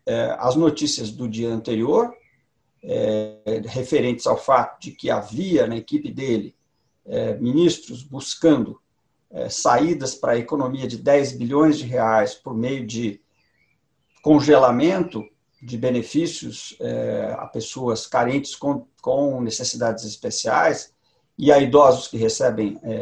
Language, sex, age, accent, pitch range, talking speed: Portuguese, male, 50-69, Brazilian, 115-160 Hz, 110 wpm